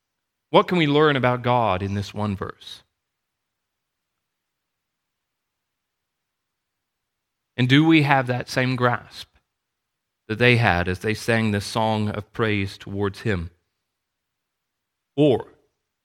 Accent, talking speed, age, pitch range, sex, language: American, 110 wpm, 40-59, 100-140 Hz, male, English